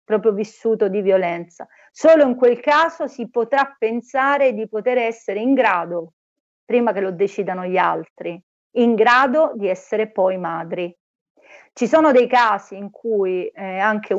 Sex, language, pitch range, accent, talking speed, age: female, Italian, 205-260 Hz, native, 150 wpm, 40-59